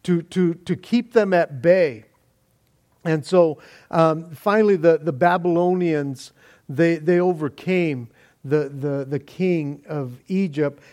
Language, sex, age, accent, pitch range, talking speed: English, male, 50-69, American, 145-180 Hz, 125 wpm